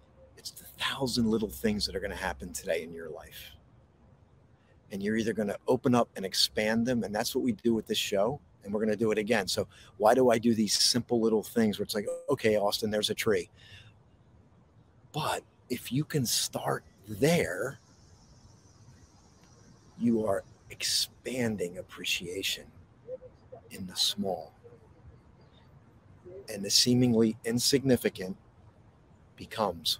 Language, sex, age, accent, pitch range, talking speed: English, male, 50-69, American, 100-120 Hz, 145 wpm